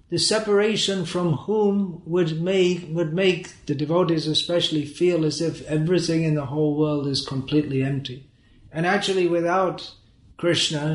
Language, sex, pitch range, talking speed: English, male, 135-170 Hz, 135 wpm